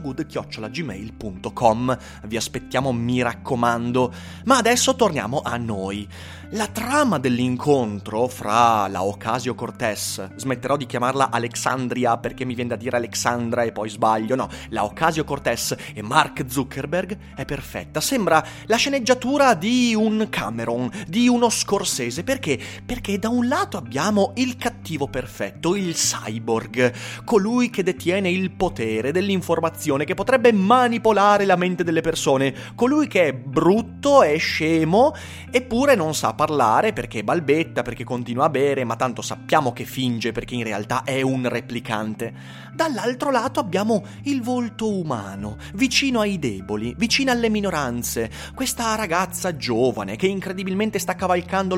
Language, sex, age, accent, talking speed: Italian, male, 30-49, native, 135 wpm